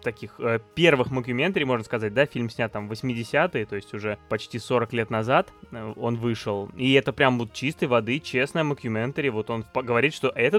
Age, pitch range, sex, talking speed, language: 20-39, 115-145 Hz, male, 195 wpm, Russian